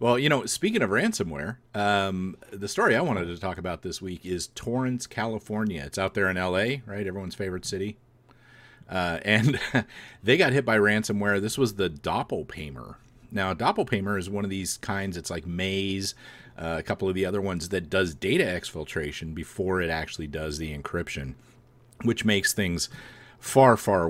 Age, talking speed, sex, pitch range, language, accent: 40-59, 175 wpm, male, 85-110 Hz, English, American